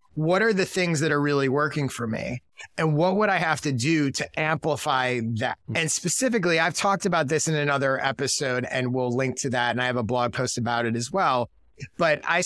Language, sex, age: English, male, 30-49